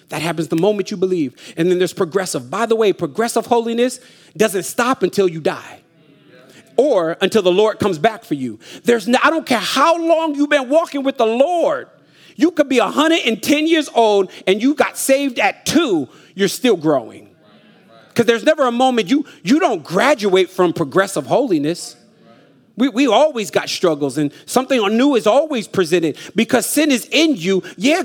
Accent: American